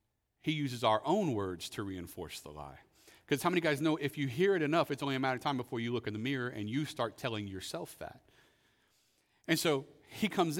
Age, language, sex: 40-59, English, male